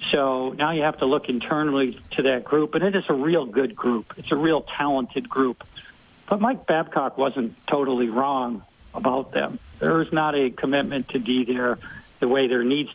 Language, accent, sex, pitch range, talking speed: English, American, male, 120-140 Hz, 195 wpm